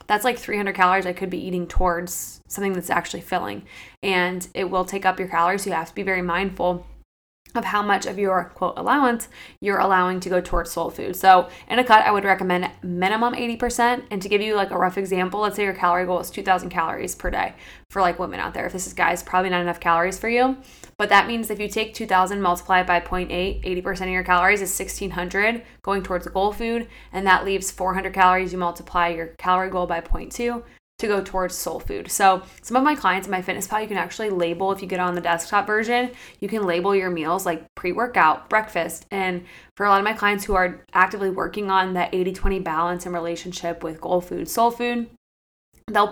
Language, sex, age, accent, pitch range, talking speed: English, female, 20-39, American, 180-205 Hz, 225 wpm